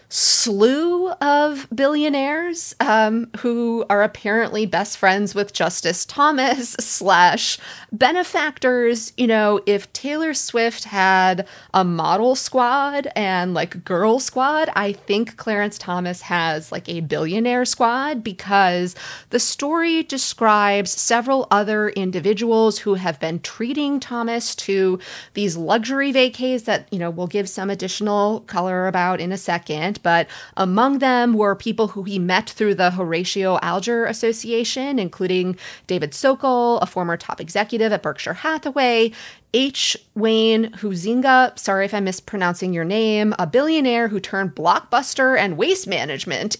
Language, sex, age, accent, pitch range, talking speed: English, female, 30-49, American, 190-245 Hz, 135 wpm